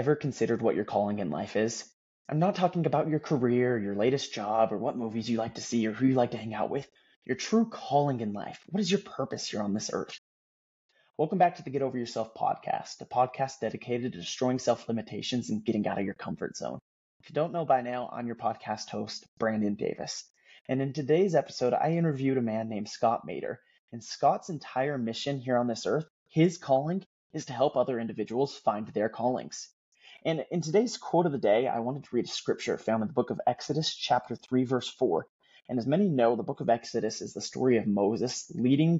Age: 20-39